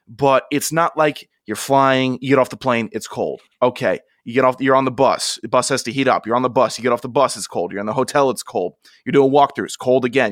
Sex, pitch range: male, 125-145 Hz